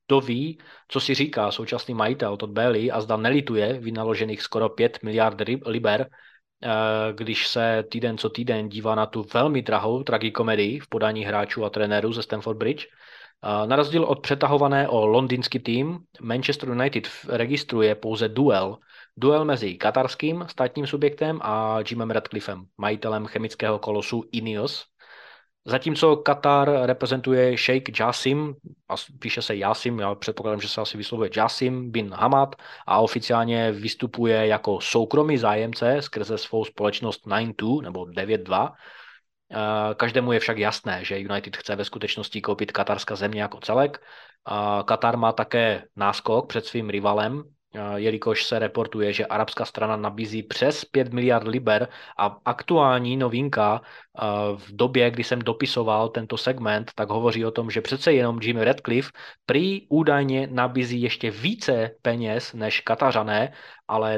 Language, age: Czech, 20-39